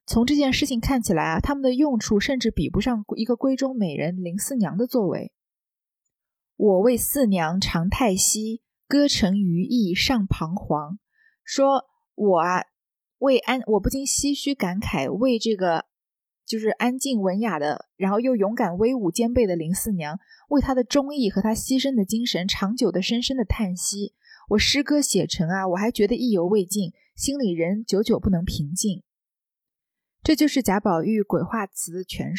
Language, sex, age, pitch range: Chinese, female, 20-39, 185-245 Hz